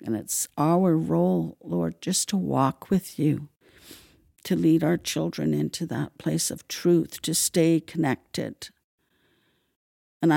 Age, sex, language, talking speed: 60-79, female, English, 135 wpm